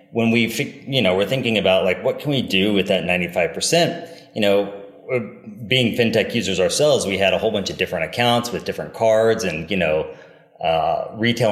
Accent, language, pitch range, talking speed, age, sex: American, English, 90-125 Hz, 195 wpm, 30-49, male